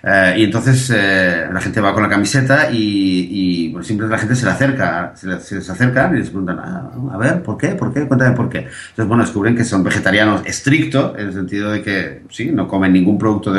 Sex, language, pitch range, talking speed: male, Spanish, 110-145 Hz, 245 wpm